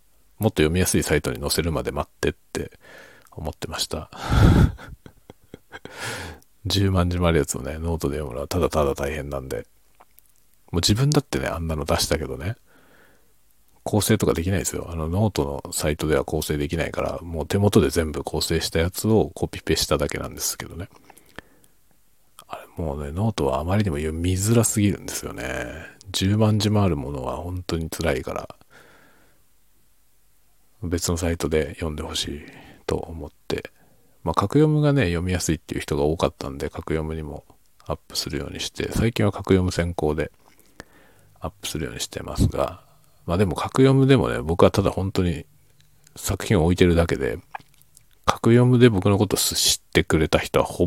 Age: 40-59